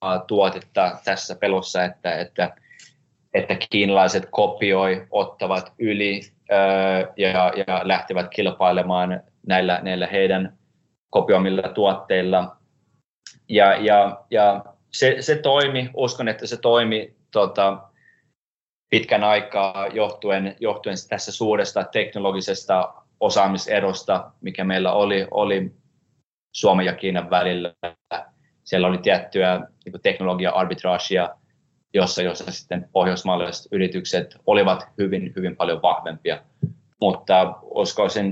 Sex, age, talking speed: male, 20-39, 100 wpm